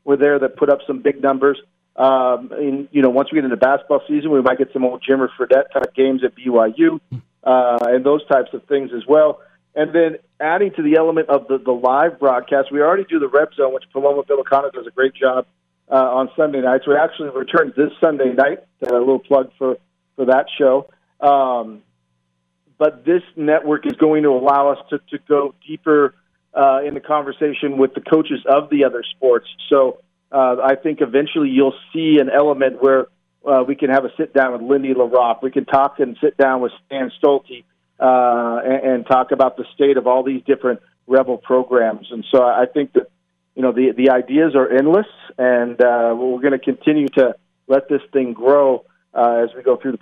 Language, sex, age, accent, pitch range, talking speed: English, male, 40-59, American, 125-145 Hz, 205 wpm